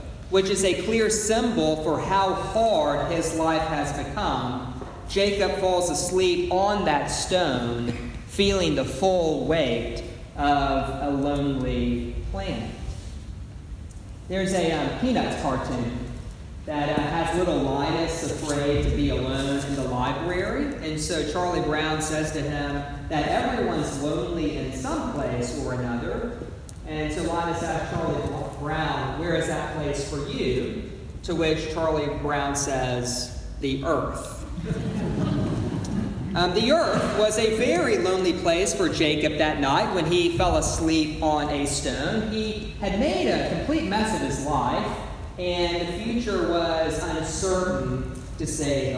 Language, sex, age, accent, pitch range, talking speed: English, male, 40-59, American, 135-175 Hz, 135 wpm